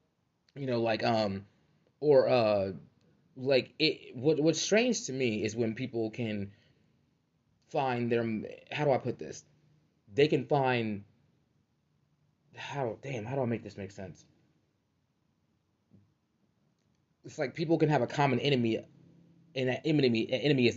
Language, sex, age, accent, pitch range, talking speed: English, male, 20-39, American, 110-140 Hz, 140 wpm